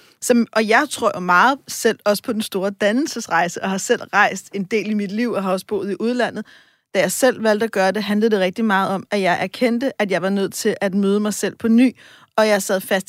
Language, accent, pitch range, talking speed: Danish, native, 200-240 Hz, 250 wpm